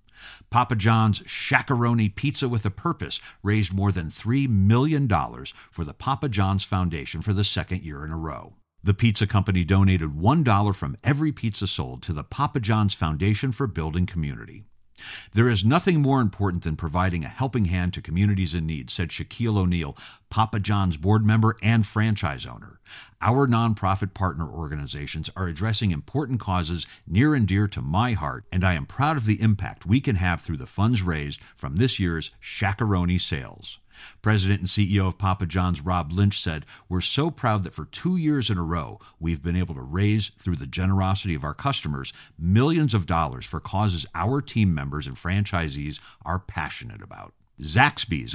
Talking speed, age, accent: 175 wpm, 50-69, American